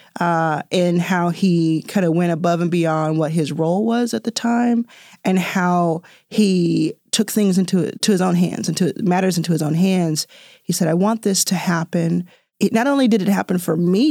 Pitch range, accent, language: 165-210 Hz, American, English